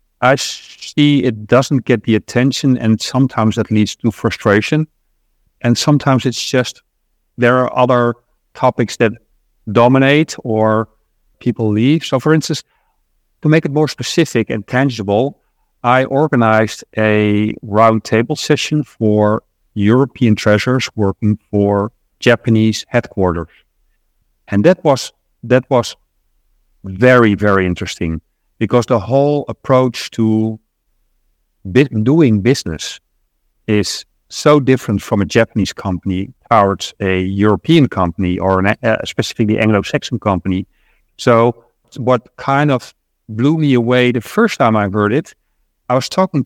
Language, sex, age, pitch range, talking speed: English, male, 50-69, 105-130 Hz, 125 wpm